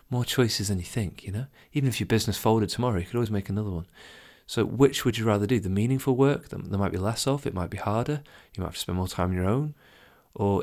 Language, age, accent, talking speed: English, 30-49, British, 270 wpm